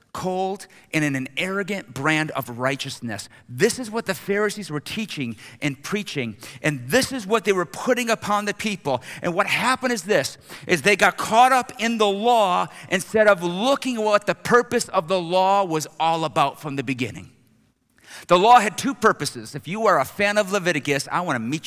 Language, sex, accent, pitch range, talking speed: English, male, American, 130-210 Hz, 195 wpm